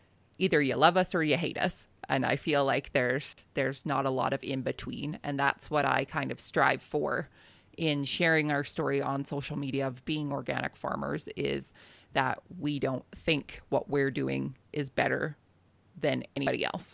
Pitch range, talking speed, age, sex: 130-155 Hz, 185 wpm, 30-49, female